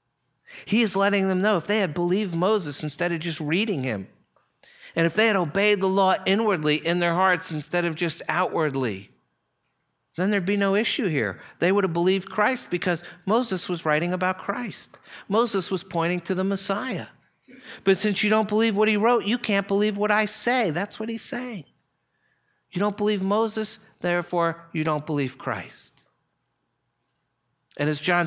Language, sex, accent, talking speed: English, male, American, 175 wpm